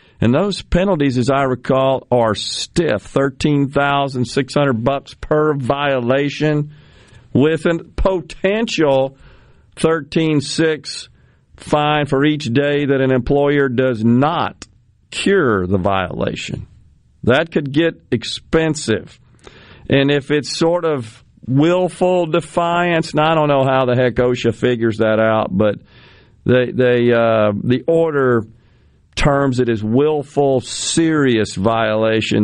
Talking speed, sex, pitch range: 120 wpm, male, 115-145 Hz